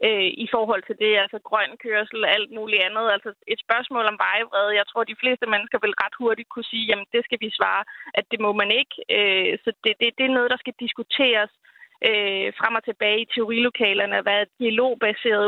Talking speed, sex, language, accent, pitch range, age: 200 wpm, female, Danish, native, 205-235 Hz, 30-49